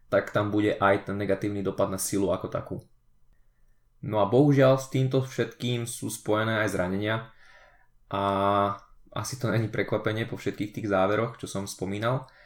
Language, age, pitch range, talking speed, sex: Slovak, 20-39, 105-125 Hz, 160 wpm, male